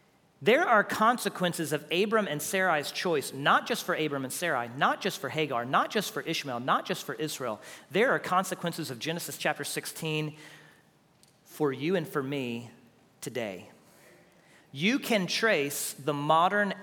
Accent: American